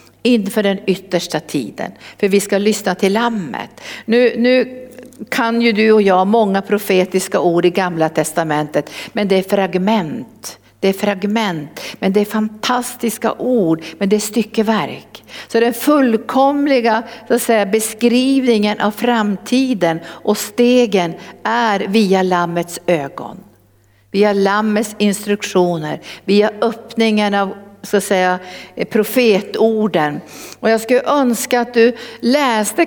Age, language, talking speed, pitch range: 60-79, Swedish, 130 wpm, 180-225 Hz